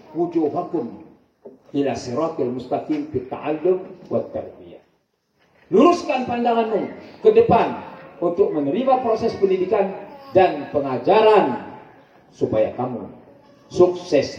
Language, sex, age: Arabic, male, 40-59